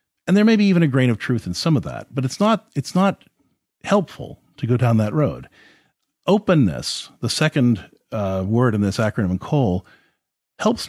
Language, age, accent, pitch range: English, 40-59, American, 105-150 Hz